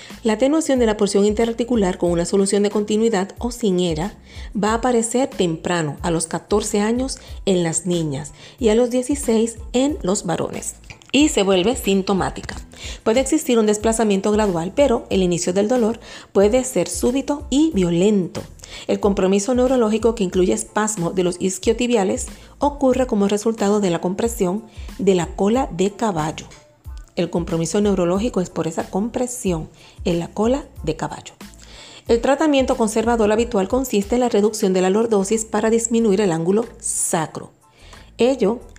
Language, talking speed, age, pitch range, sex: Spanish, 155 wpm, 40-59, 180-235 Hz, female